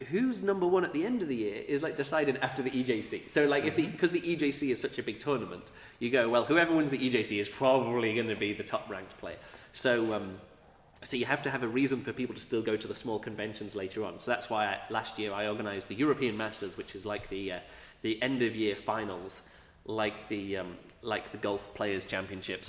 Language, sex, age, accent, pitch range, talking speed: English, male, 30-49, British, 100-125 Hz, 240 wpm